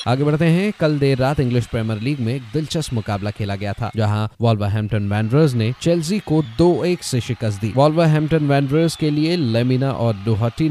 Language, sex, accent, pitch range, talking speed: Hindi, male, native, 115-145 Hz, 200 wpm